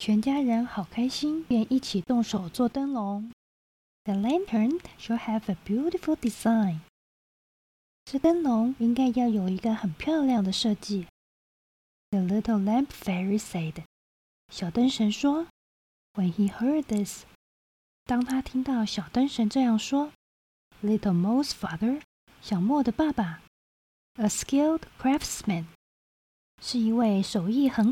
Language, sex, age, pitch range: Chinese, female, 20-39, 195-250 Hz